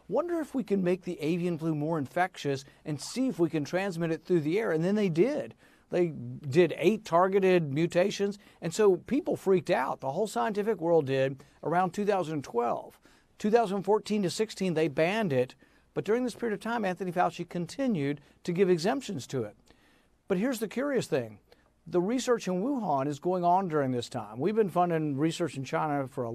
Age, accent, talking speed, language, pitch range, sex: 50-69, American, 190 wpm, English, 155-205 Hz, male